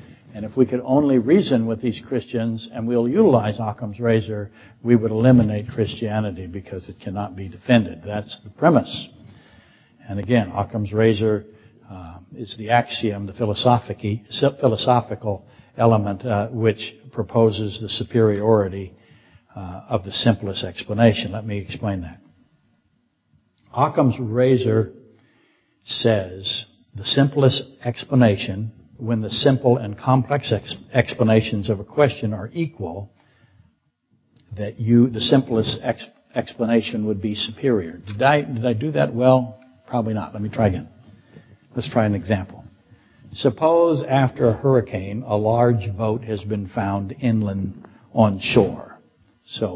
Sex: male